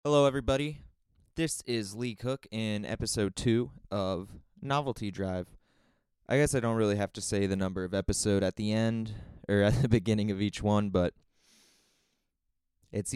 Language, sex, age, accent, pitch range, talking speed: English, male, 20-39, American, 100-115 Hz, 165 wpm